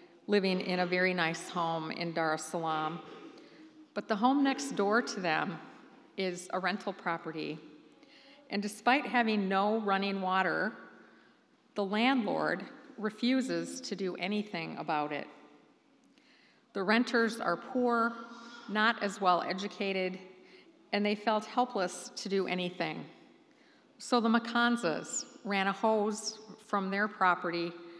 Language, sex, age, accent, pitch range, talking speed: English, female, 50-69, American, 180-240 Hz, 125 wpm